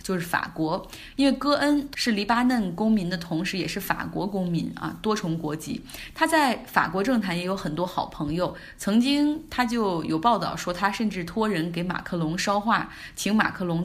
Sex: female